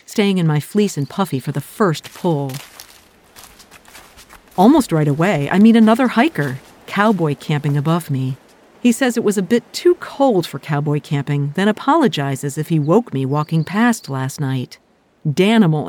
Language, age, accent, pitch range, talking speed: English, 50-69, American, 145-215 Hz, 160 wpm